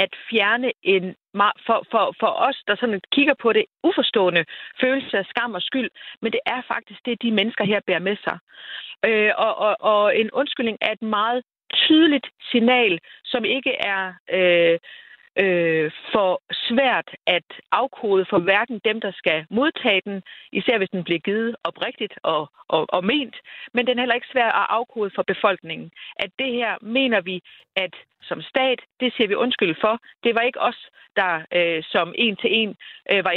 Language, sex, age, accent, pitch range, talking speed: Danish, female, 40-59, native, 195-250 Hz, 175 wpm